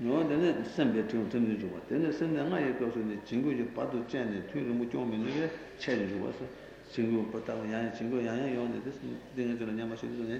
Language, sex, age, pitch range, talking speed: Italian, male, 60-79, 105-130 Hz, 180 wpm